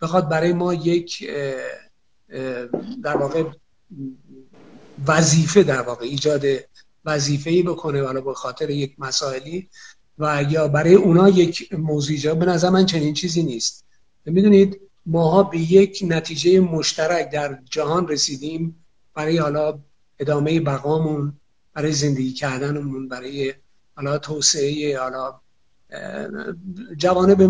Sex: male